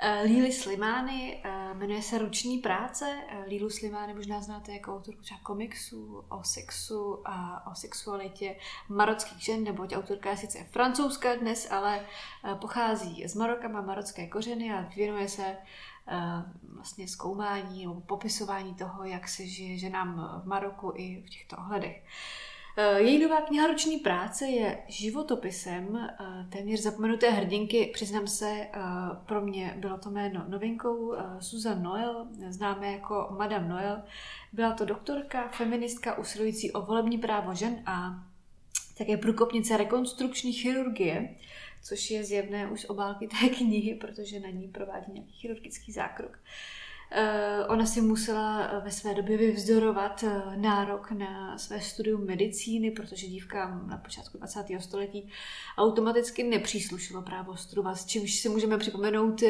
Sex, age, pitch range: female, 20-39, 195-220 Hz